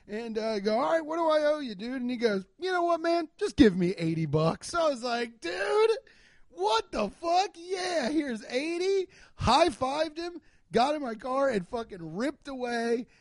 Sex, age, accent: male, 30-49, American